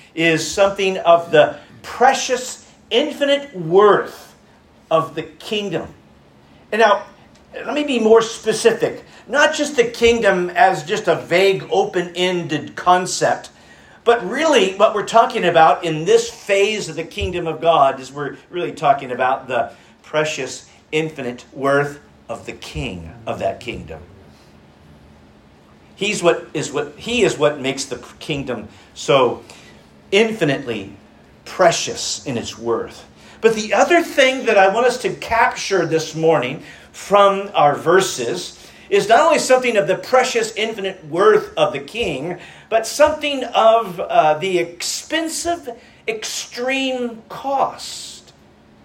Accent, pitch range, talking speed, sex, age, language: American, 145-230 Hz, 130 wpm, male, 50-69, English